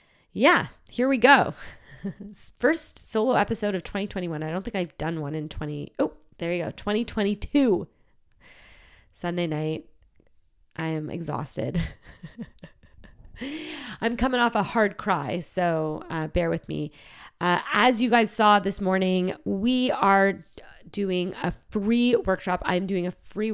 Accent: American